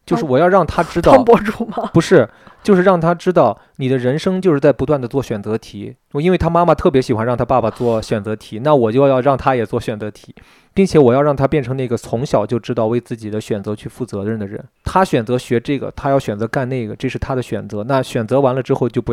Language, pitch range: Chinese, 115-150 Hz